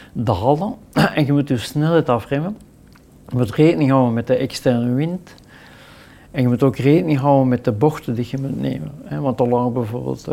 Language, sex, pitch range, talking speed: Dutch, male, 125-140 Hz, 190 wpm